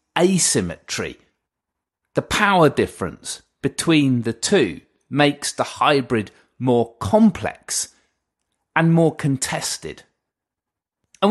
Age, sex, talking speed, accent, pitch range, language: 30-49, male, 85 wpm, British, 130-180 Hz, English